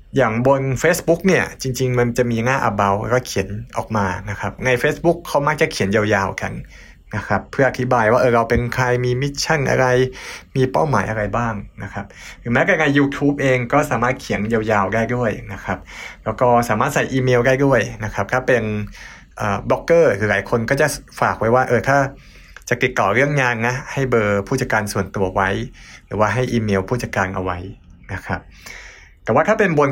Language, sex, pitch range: English, male, 105-130 Hz